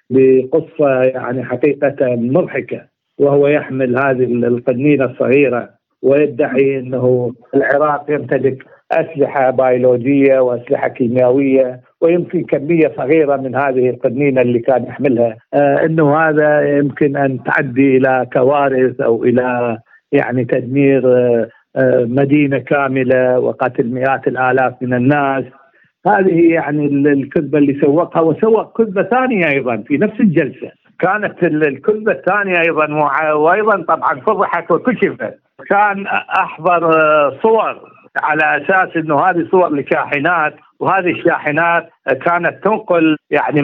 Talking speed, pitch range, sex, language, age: 115 wpm, 130-160 Hz, male, Arabic, 50-69